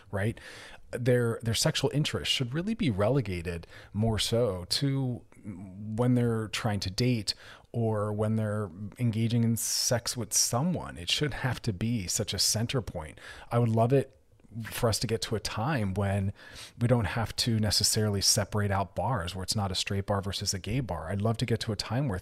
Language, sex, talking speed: English, male, 195 wpm